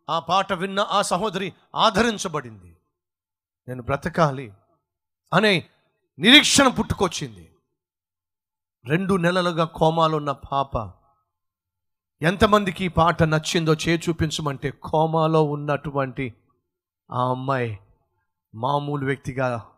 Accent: native